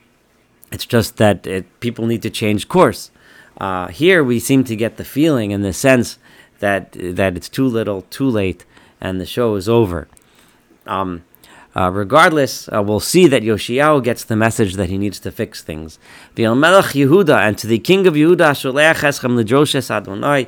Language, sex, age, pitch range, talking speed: English, male, 40-59, 105-140 Hz, 170 wpm